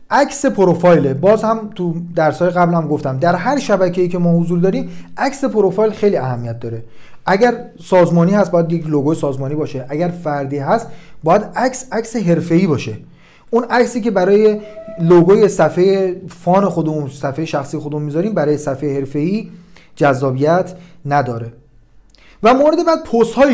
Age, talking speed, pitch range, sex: 40-59, 145 wpm, 145-210 Hz, male